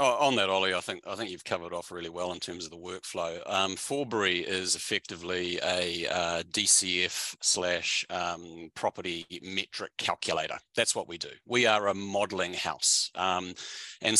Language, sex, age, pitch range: English, male, 40-59, 95-130 Hz